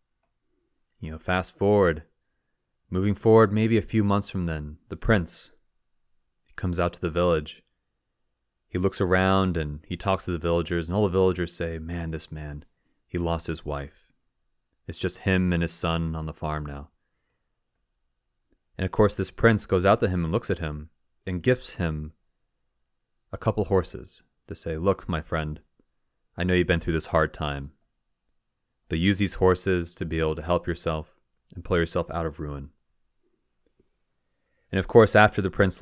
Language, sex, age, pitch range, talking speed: English, male, 30-49, 85-110 Hz, 175 wpm